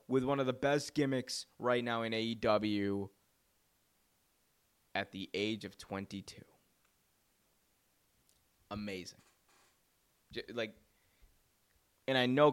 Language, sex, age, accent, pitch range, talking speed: English, male, 20-39, American, 110-130 Hz, 100 wpm